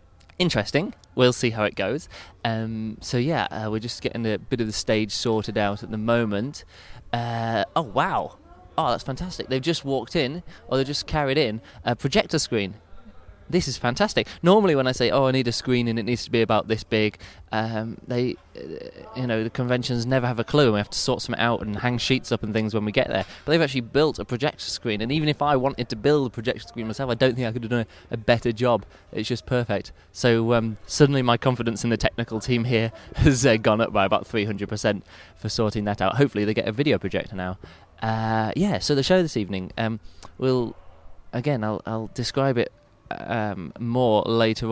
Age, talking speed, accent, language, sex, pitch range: 20-39, 225 wpm, British, English, male, 105-125 Hz